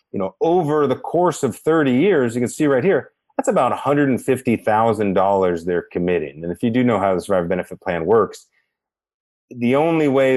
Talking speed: 185 wpm